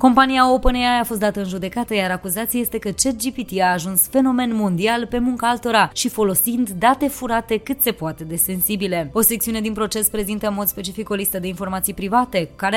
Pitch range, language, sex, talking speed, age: 180-235 Hz, Romanian, female, 195 wpm, 20-39